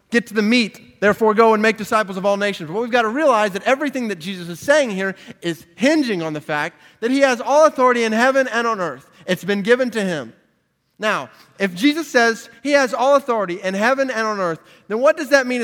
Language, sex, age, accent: English, male, 30-49, American